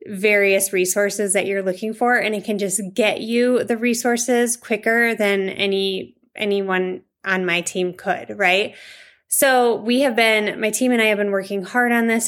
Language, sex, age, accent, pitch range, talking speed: English, female, 20-39, American, 185-220 Hz, 180 wpm